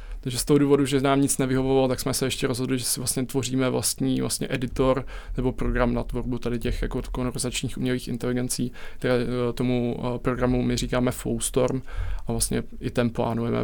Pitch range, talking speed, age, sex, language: 110-130 Hz, 180 wpm, 20-39, male, Czech